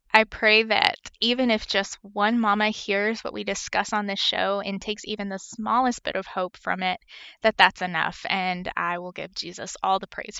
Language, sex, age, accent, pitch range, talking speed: English, female, 20-39, American, 200-255 Hz, 210 wpm